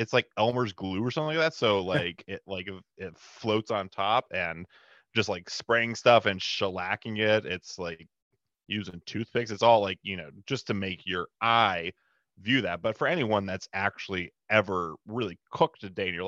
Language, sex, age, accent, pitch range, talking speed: English, male, 30-49, American, 95-125 Hz, 190 wpm